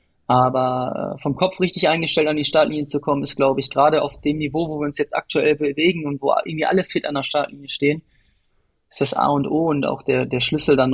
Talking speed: 235 wpm